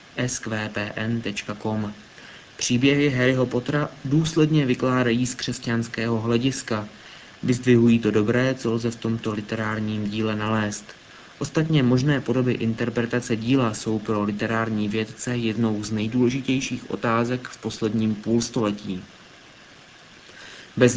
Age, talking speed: 30-49, 105 wpm